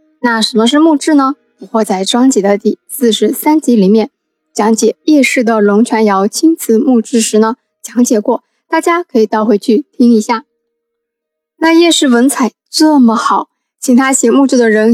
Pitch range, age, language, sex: 220-275 Hz, 20-39, Chinese, female